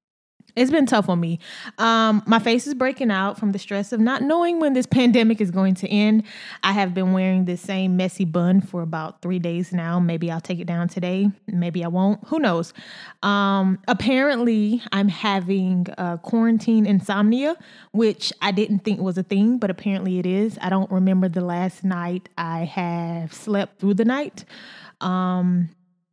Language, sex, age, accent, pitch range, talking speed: English, female, 20-39, American, 180-225 Hz, 180 wpm